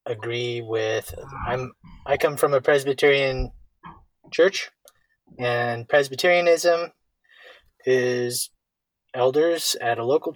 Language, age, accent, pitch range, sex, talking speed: English, 20-39, American, 100-145 Hz, male, 95 wpm